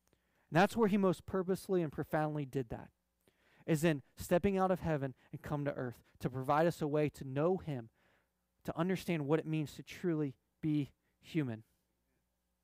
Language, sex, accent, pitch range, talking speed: English, male, American, 145-190 Hz, 170 wpm